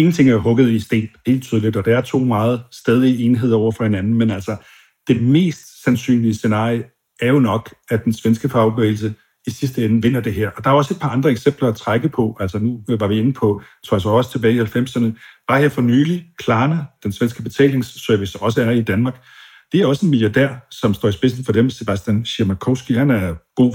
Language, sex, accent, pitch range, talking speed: Danish, male, native, 110-130 Hz, 220 wpm